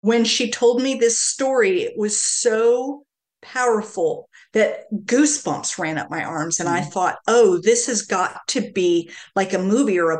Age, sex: 50-69, female